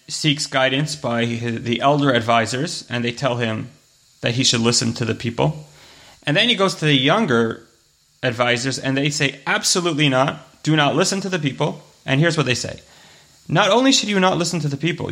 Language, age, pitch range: English, 30-49, 120-150 Hz